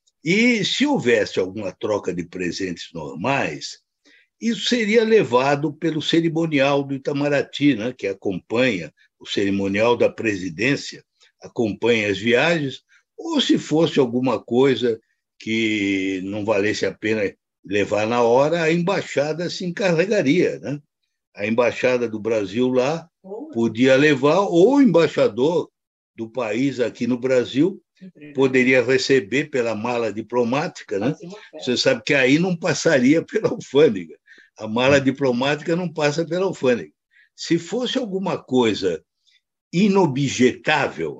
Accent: Brazilian